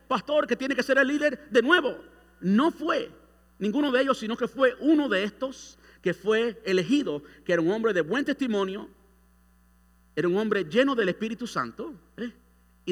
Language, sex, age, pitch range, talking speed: Spanish, male, 50-69, 175-260 Hz, 175 wpm